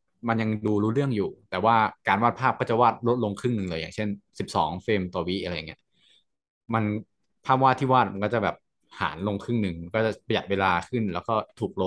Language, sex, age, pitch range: Thai, male, 20-39, 95-125 Hz